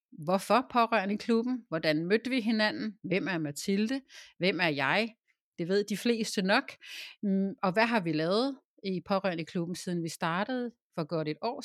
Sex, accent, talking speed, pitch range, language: female, native, 170 wpm, 165-235 Hz, Danish